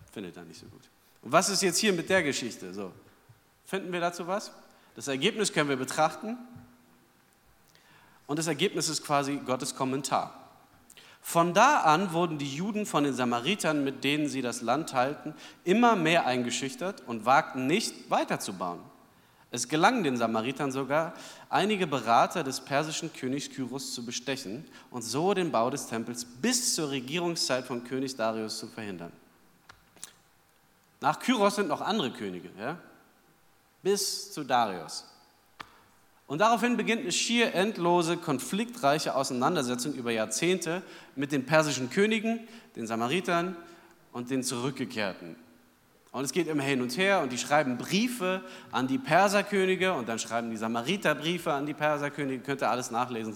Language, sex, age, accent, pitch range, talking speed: German, male, 40-59, German, 125-185 Hz, 150 wpm